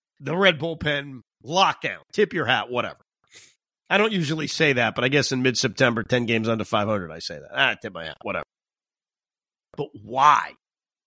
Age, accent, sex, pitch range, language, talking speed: 40-59, American, male, 130-180 Hz, English, 175 wpm